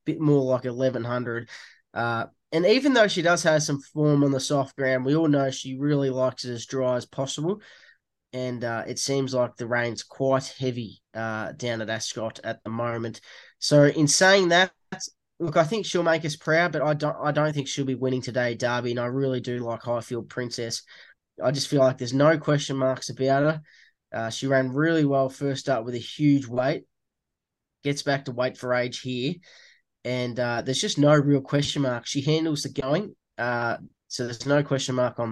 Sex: male